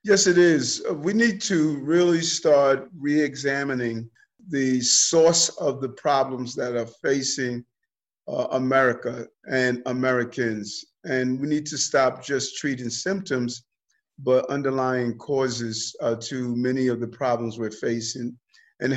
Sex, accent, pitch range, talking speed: male, American, 125-145 Hz, 135 wpm